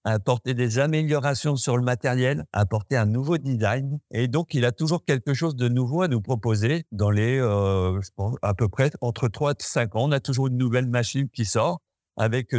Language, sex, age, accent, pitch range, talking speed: French, male, 60-79, French, 110-140 Hz, 210 wpm